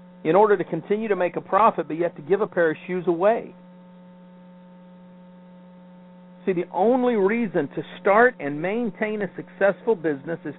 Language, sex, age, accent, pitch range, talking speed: English, male, 50-69, American, 175-190 Hz, 170 wpm